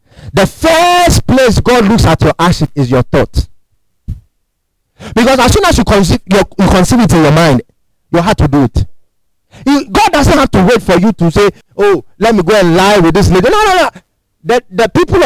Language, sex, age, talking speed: English, male, 40-59, 200 wpm